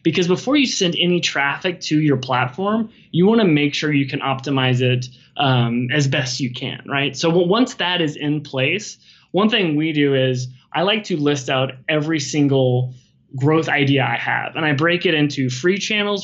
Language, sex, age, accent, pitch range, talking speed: English, male, 20-39, American, 130-170 Hz, 190 wpm